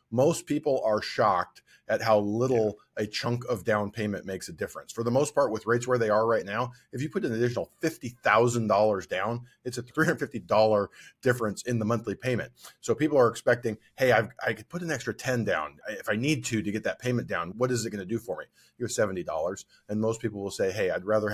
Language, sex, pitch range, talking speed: English, male, 105-125 Hz, 230 wpm